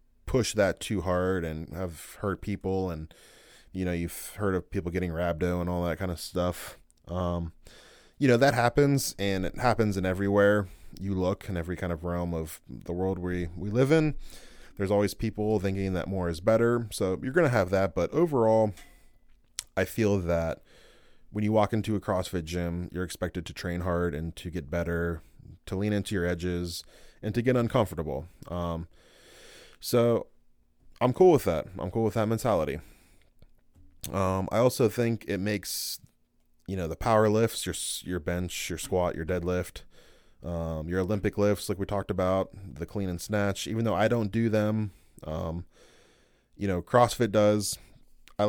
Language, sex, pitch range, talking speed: English, male, 85-105 Hz, 180 wpm